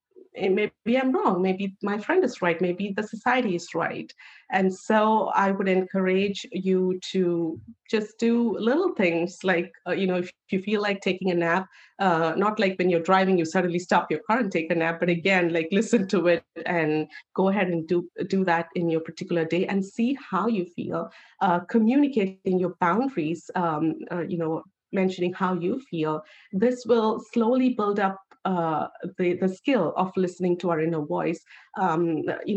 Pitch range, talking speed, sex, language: 180-220 Hz, 185 wpm, female, English